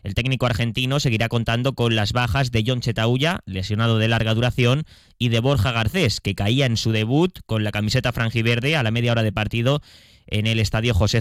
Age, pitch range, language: 20-39, 105-130 Hz, Spanish